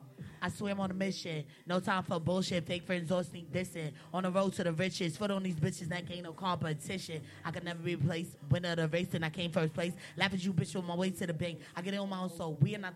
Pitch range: 155-180 Hz